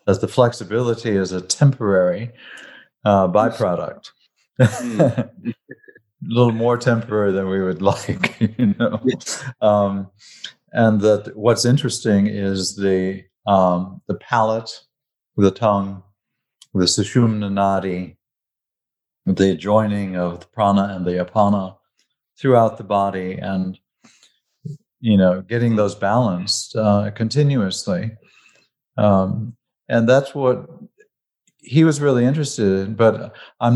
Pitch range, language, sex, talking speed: 100-125 Hz, English, male, 110 wpm